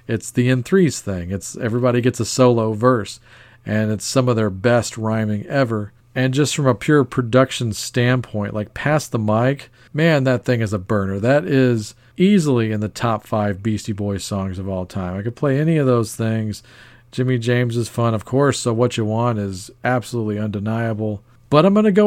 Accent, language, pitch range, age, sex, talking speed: American, English, 110-140 Hz, 40-59, male, 200 wpm